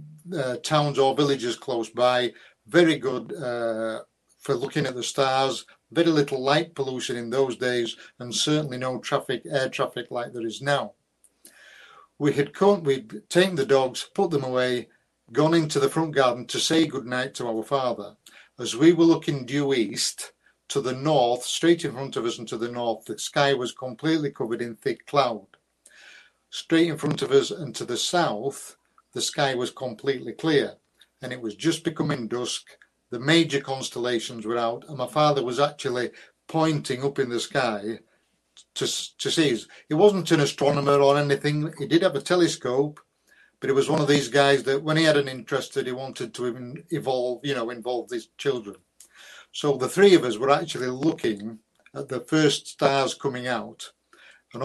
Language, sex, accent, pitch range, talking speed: English, male, British, 125-155 Hz, 180 wpm